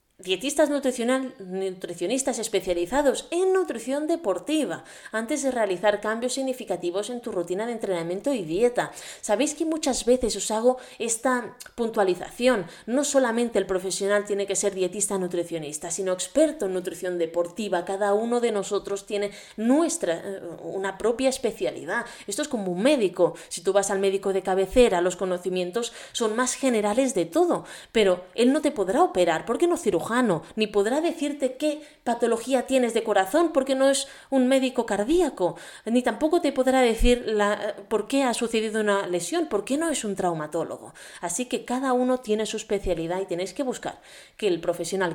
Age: 20-39